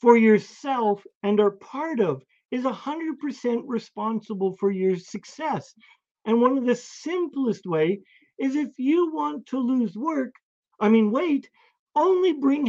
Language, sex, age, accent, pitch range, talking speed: English, male, 50-69, American, 210-280 Hz, 140 wpm